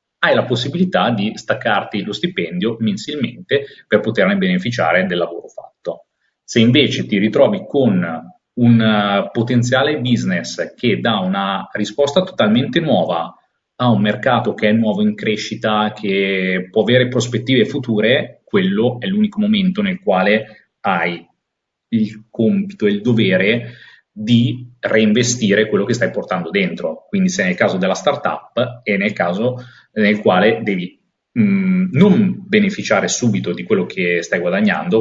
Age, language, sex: 30-49, Italian, male